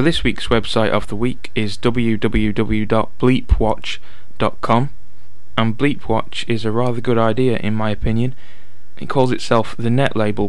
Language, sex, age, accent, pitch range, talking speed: English, male, 10-29, British, 105-115 Hz, 145 wpm